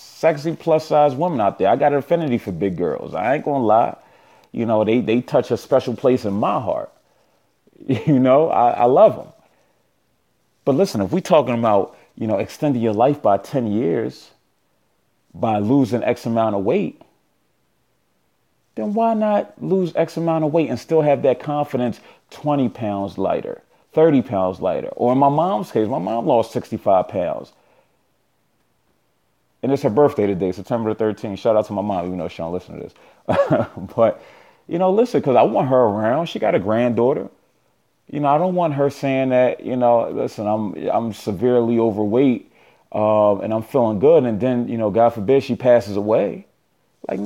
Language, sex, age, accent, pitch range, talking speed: English, male, 30-49, American, 110-155 Hz, 185 wpm